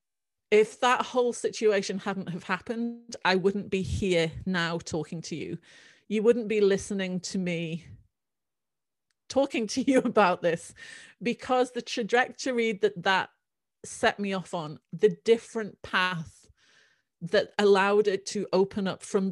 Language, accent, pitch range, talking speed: English, British, 175-220 Hz, 140 wpm